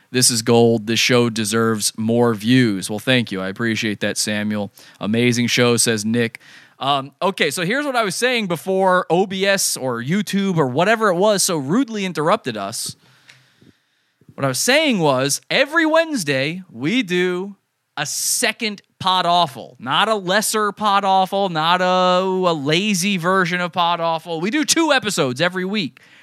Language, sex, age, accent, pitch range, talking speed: English, male, 20-39, American, 140-200 Hz, 160 wpm